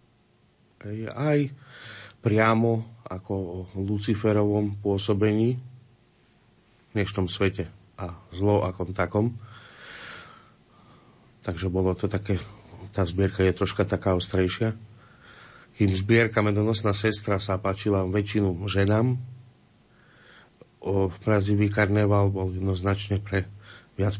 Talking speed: 100 wpm